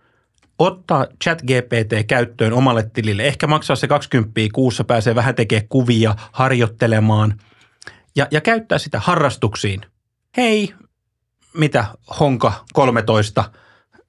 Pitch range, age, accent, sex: 115-150 Hz, 30-49, native, male